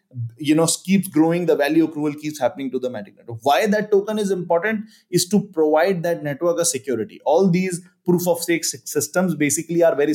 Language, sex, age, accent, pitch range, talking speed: English, male, 30-49, Indian, 150-200 Hz, 195 wpm